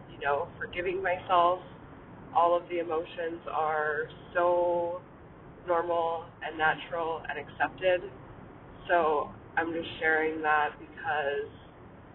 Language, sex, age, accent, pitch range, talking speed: English, female, 20-39, American, 150-175 Hz, 105 wpm